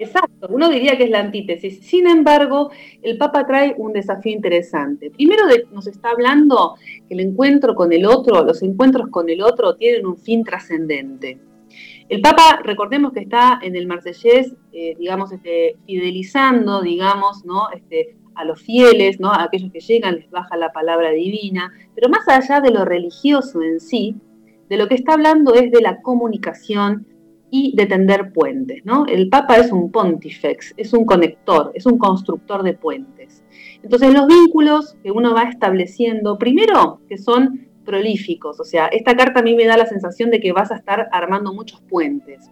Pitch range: 180-255 Hz